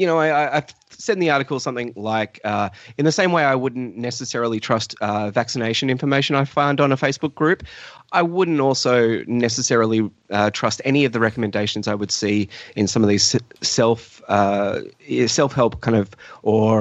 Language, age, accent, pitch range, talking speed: English, 30-49, Australian, 105-135 Hz, 180 wpm